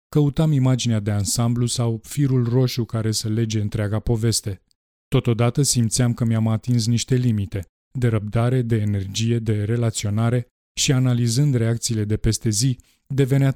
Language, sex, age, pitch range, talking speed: Romanian, male, 20-39, 110-125 Hz, 140 wpm